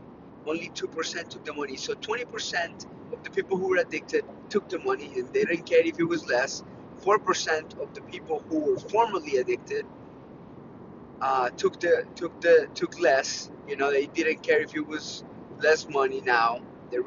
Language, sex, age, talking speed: English, male, 30-49, 190 wpm